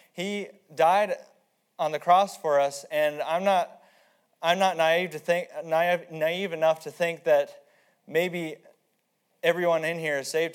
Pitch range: 150-175 Hz